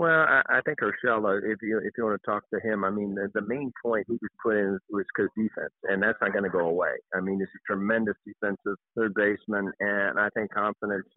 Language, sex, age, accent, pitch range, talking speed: English, male, 50-69, American, 95-110 Hz, 240 wpm